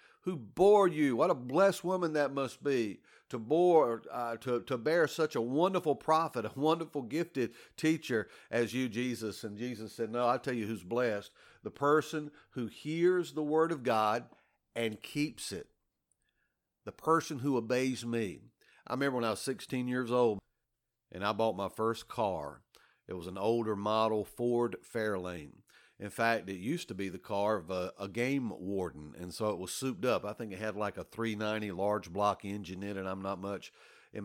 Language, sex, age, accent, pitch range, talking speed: English, male, 50-69, American, 100-125 Hz, 190 wpm